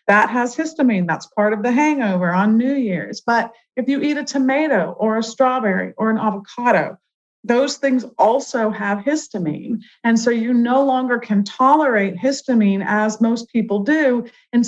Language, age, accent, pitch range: English, 40-59, American, 205-250 Hz